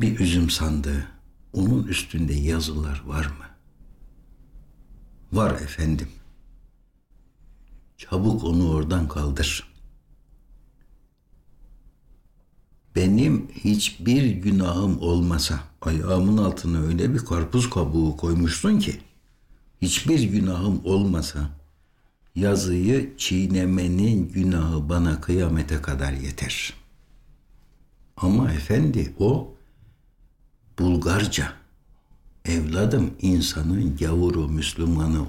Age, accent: 60-79, native